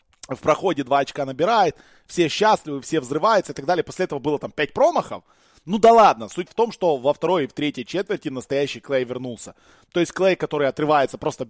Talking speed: 210 wpm